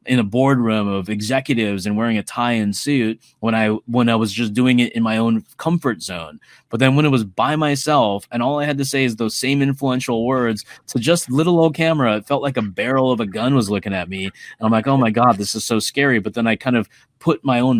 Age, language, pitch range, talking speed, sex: 20-39, English, 105-130 Hz, 255 wpm, male